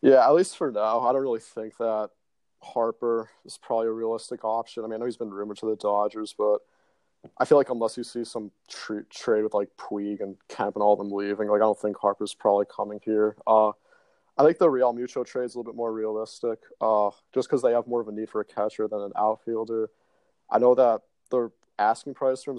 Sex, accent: male, American